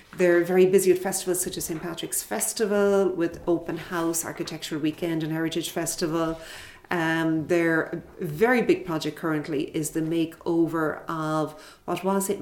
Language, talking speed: English, 150 wpm